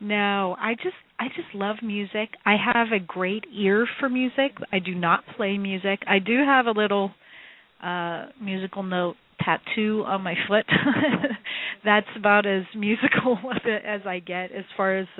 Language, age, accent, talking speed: English, 40-59, American, 160 wpm